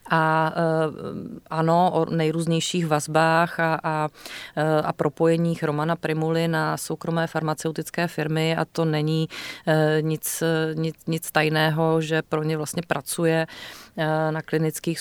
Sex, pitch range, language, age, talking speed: female, 160-175 Hz, Czech, 30-49, 115 wpm